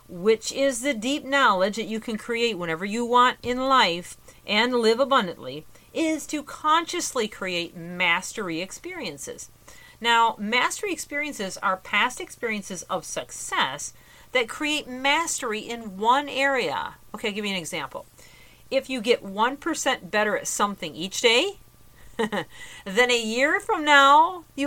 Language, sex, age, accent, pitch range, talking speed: English, female, 40-59, American, 190-260 Hz, 140 wpm